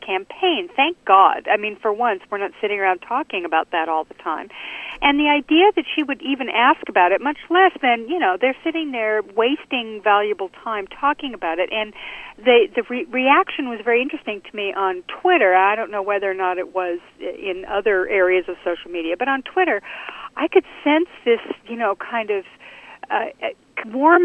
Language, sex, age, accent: English, female, 50-69, American